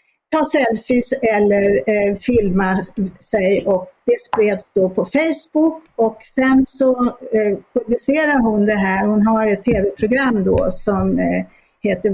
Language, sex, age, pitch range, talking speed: Swedish, female, 50-69, 210-265 Hz, 125 wpm